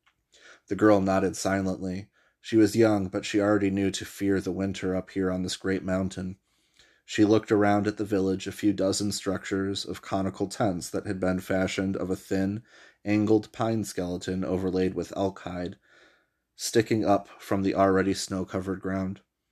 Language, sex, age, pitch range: English, male, 30-49, 95-105 Hz